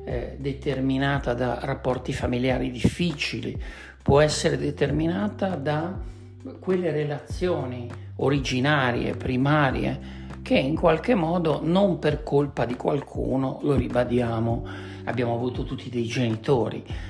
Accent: native